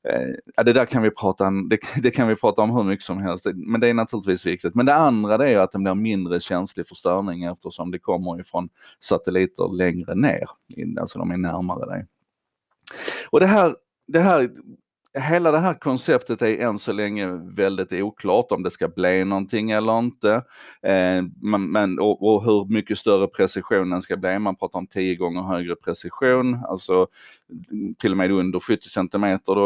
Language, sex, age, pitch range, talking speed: Swedish, male, 30-49, 95-140 Hz, 180 wpm